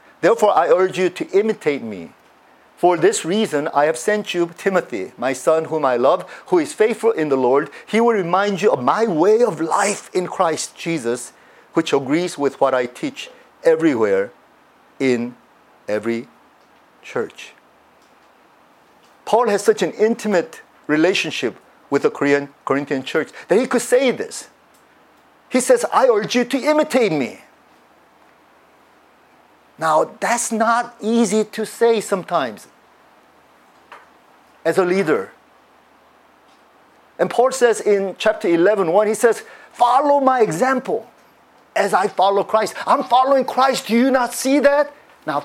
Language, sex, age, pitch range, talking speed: English, male, 50-69, 175-250 Hz, 140 wpm